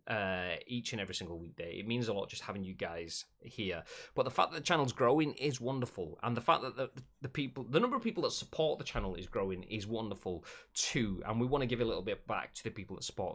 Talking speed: 265 wpm